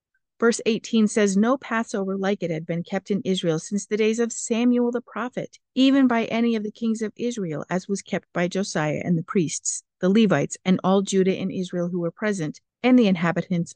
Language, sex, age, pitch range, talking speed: English, female, 50-69, 180-230 Hz, 210 wpm